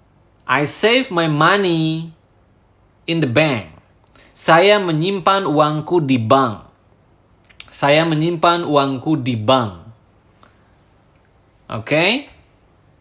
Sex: male